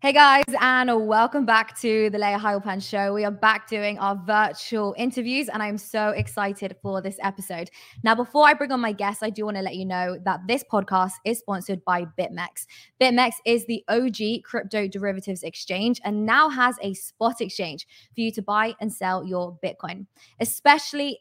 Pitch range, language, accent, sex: 190-230 Hz, English, British, female